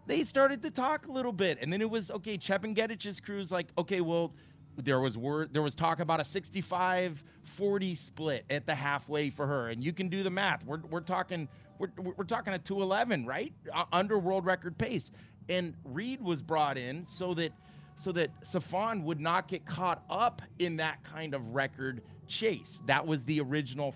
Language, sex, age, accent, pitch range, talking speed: English, male, 30-49, American, 140-185 Hz, 195 wpm